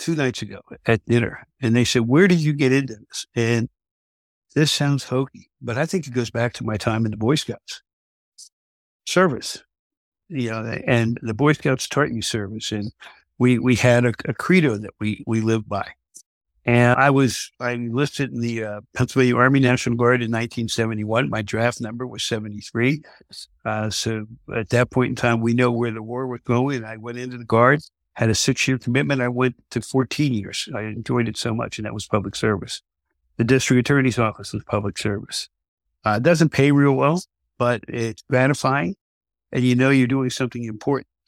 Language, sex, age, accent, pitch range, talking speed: English, male, 60-79, American, 115-130 Hz, 195 wpm